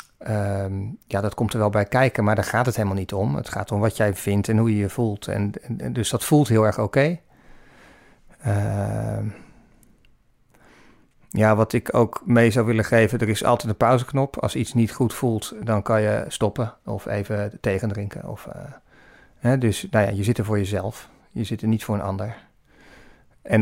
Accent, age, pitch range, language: Dutch, 40-59, 105-125 Hz, Dutch